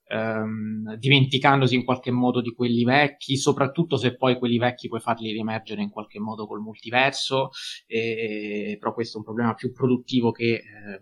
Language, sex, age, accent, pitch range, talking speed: Italian, male, 20-39, native, 110-130 Hz, 175 wpm